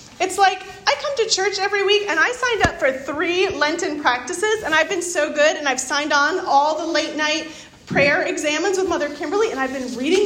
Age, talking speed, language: 30-49, 220 wpm, English